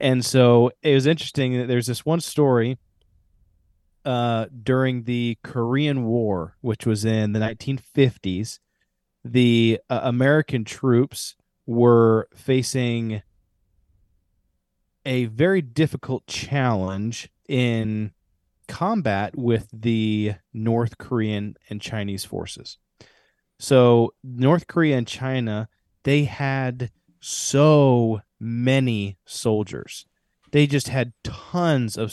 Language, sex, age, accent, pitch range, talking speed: English, male, 30-49, American, 110-135 Hz, 100 wpm